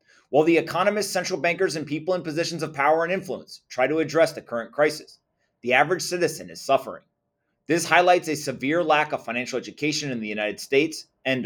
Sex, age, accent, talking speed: male, 30-49, American, 195 wpm